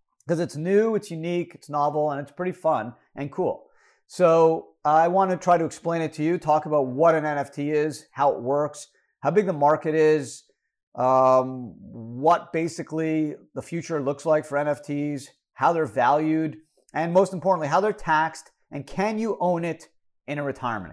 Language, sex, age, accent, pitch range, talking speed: English, male, 50-69, American, 145-185 Hz, 180 wpm